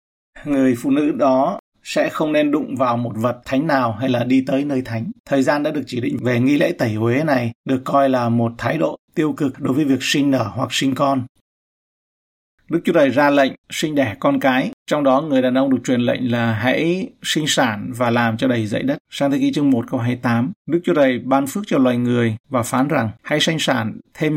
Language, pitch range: Vietnamese, 120-150 Hz